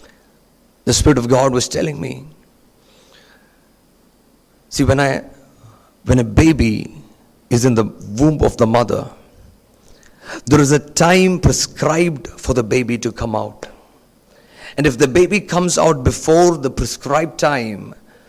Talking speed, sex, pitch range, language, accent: 135 wpm, male, 125-155 Hz, Malayalam, native